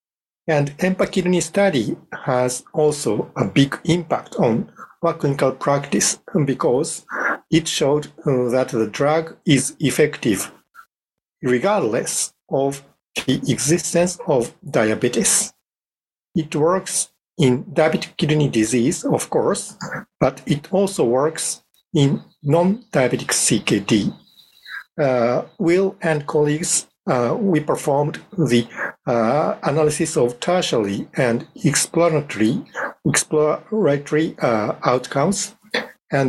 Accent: Japanese